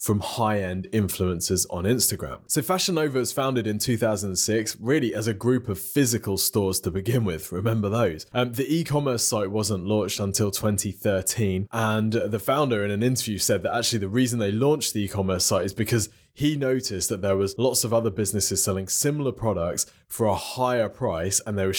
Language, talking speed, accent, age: English, 190 wpm, British, 20-39